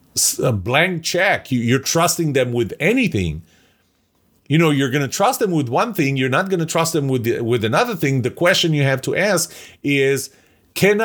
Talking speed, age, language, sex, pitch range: 185 wpm, 40-59, English, male, 125-175 Hz